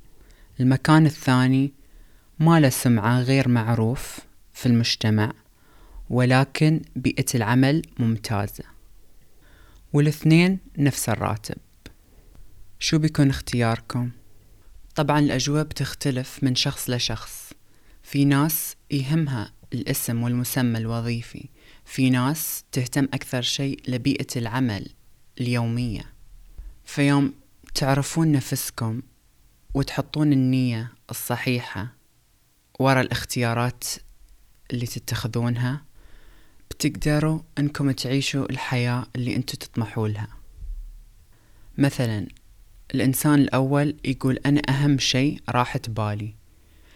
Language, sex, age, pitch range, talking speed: Arabic, female, 20-39, 110-140 Hz, 85 wpm